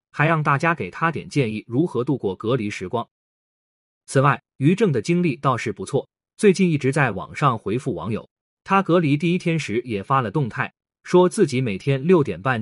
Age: 20-39